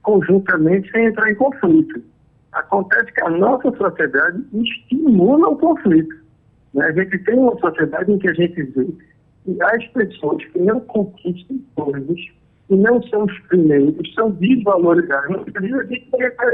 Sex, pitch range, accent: male, 175-230 Hz, Brazilian